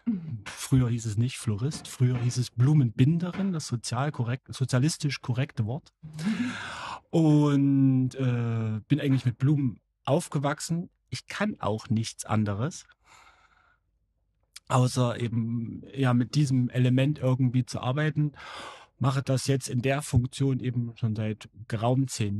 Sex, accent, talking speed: male, German, 120 wpm